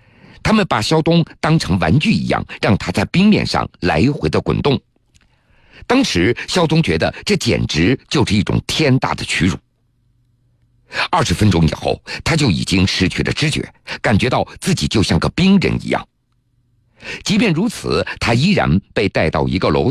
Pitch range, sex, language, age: 100-140 Hz, male, Chinese, 50-69